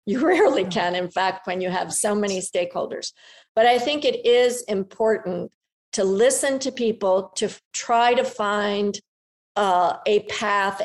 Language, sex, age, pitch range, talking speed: English, female, 50-69, 180-215 Hz, 160 wpm